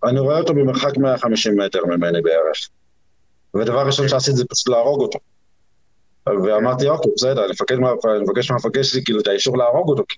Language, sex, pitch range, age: Hebrew, male, 110-140 Hz, 50-69